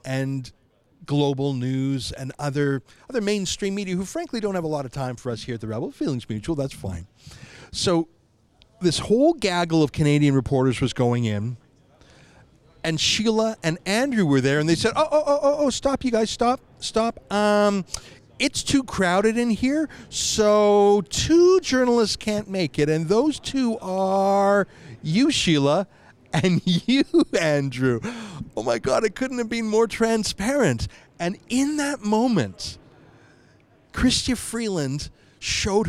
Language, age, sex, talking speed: English, 40-59, male, 150 wpm